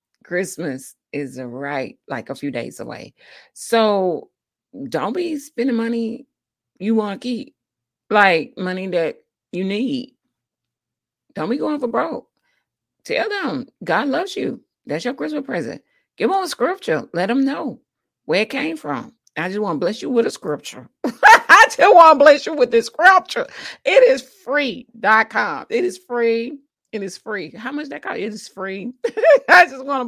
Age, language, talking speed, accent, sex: 40-59, English, 170 wpm, American, female